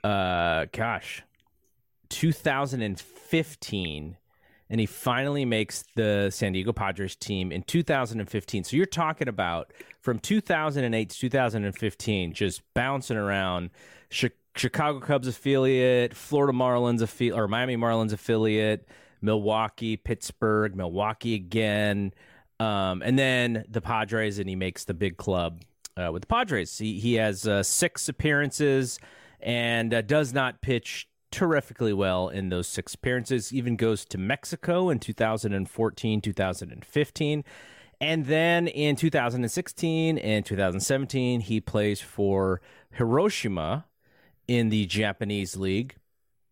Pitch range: 105-135 Hz